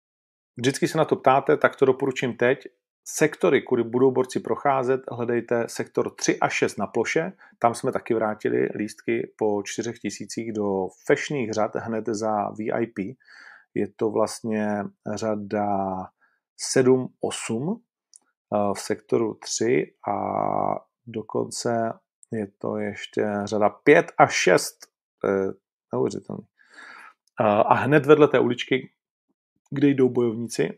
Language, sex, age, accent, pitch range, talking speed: Czech, male, 40-59, native, 105-125 Hz, 120 wpm